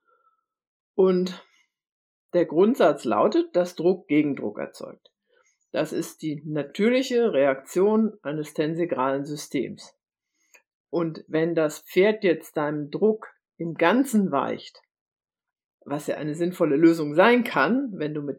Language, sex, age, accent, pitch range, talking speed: German, female, 50-69, German, 165-220 Hz, 120 wpm